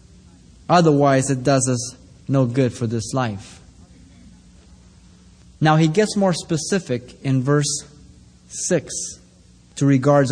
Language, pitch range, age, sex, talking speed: English, 120-155 Hz, 30-49, male, 110 wpm